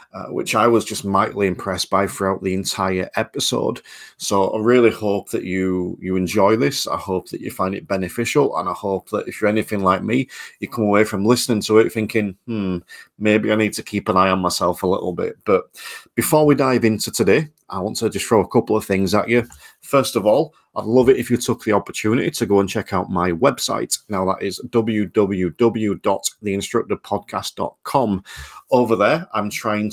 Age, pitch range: 40-59, 95-115 Hz